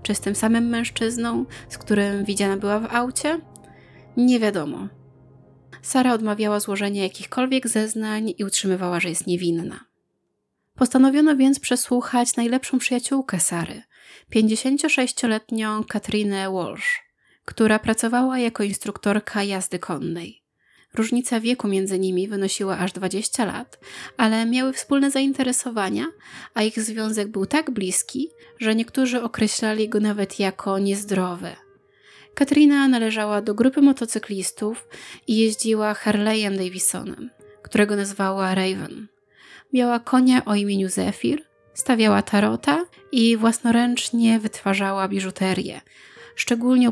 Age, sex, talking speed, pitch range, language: 20-39, female, 110 wpm, 195-245 Hz, Polish